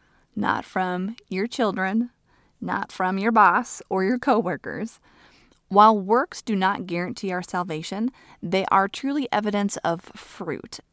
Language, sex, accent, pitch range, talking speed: English, female, American, 180-225 Hz, 135 wpm